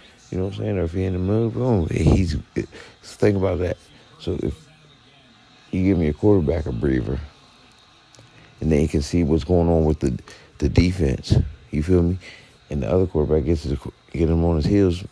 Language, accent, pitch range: English, American, 80-110 Hz